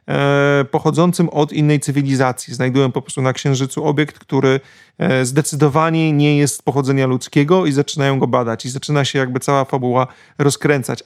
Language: Polish